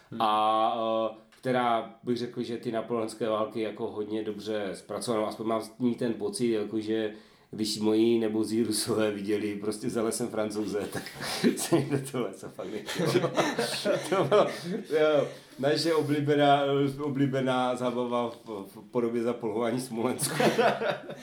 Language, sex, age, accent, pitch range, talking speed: Czech, male, 30-49, native, 105-125 Hz, 110 wpm